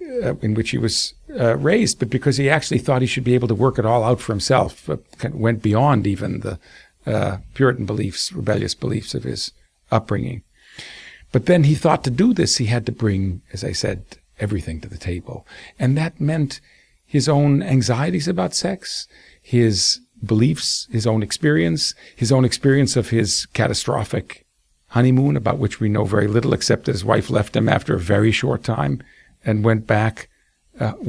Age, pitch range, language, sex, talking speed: 50-69, 105-135 Hz, English, male, 185 wpm